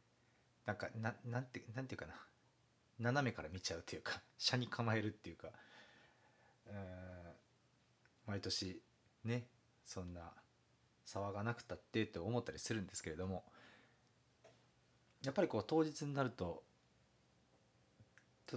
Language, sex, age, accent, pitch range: Japanese, male, 40-59, native, 80-115 Hz